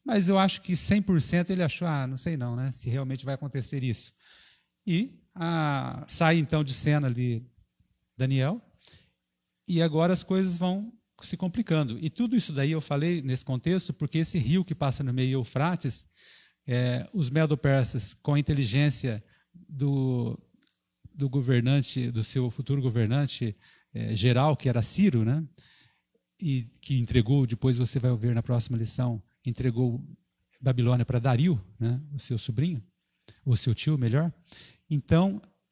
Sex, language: male, Portuguese